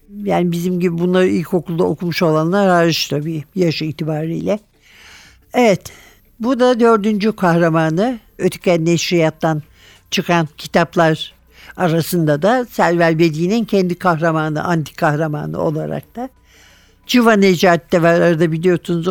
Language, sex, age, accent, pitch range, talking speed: Turkish, male, 60-79, native, 165-200 Hz, 110 wpm